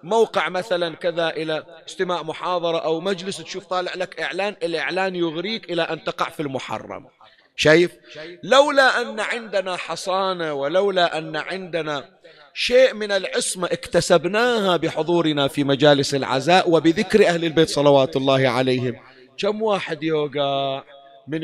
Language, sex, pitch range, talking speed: Arabic, male, 145-180 Hz, 125 wpm